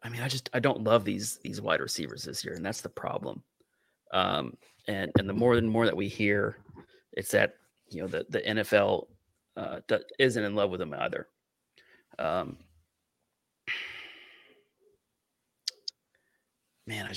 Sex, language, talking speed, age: male, English, 155 wpm, 30-49